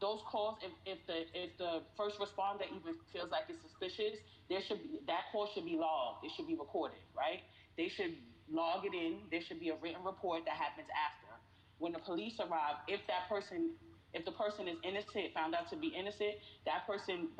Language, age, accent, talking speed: English, 30-49, American, 210 wpm